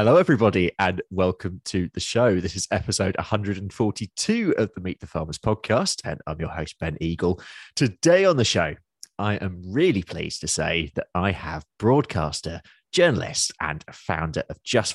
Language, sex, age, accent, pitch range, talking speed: English, male, 30-49, British, 90-110 Hz, 170 wpm